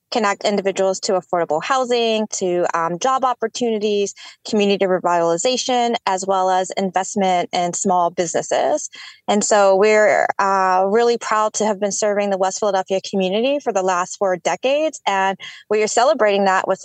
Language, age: English, 20-39